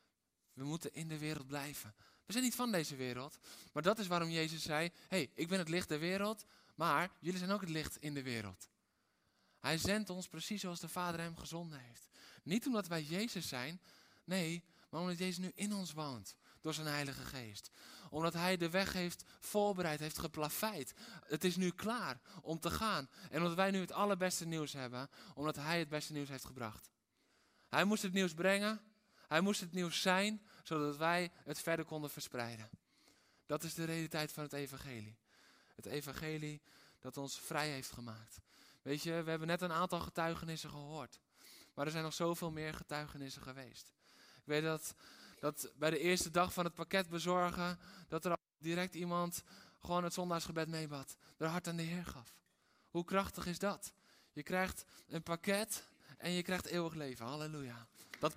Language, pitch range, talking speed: Dutch, 150-180 Hz, 185 wpm